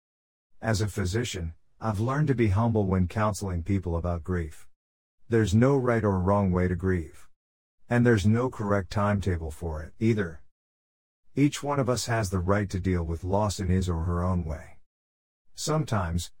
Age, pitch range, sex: 50-69, 85-115 Hz, male